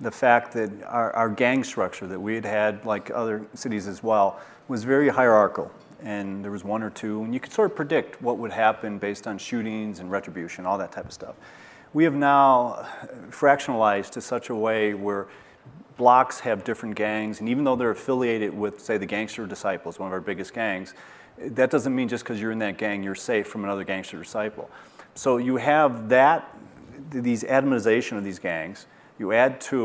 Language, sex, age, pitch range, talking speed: English, male, 40-59, 100-125 Hz, 200 wpm